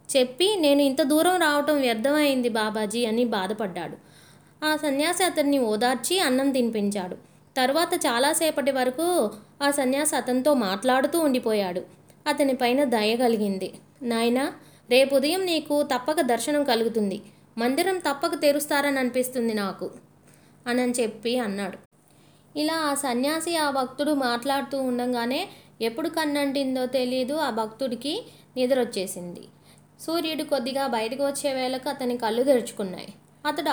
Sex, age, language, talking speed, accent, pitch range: female, 20-39, Telugu, 110 wpm, native, 240-295 Hz